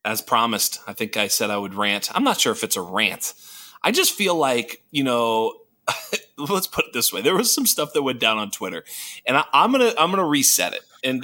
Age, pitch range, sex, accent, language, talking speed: 30-49, 110-150 Hz, male, American, English, 240 wpm